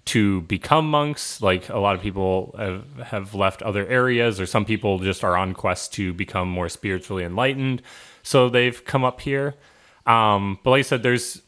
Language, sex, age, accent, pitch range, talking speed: English, male, 20-39, American, 95-115 Hz, 190 wpm